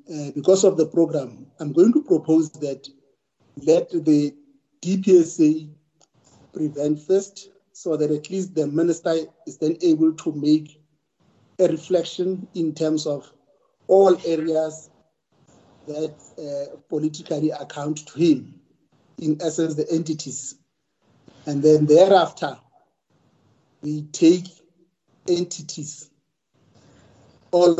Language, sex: English, male